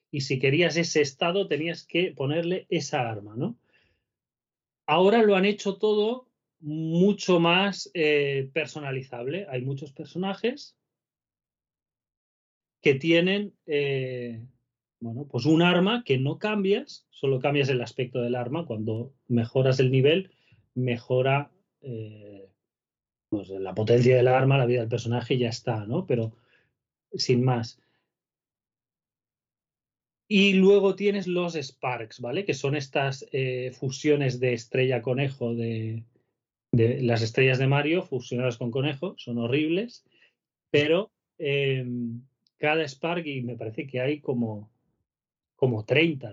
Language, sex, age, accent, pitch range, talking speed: Spanish, male, 30-49, Spanish, 125-165 Hz, 125 wpm